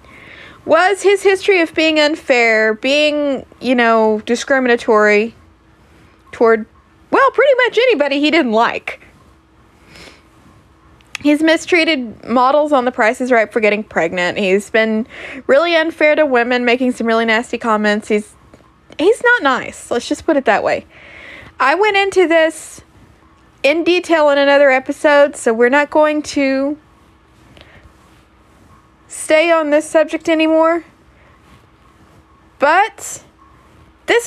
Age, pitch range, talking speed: 20-39, 235-320 Hz, 125 wpm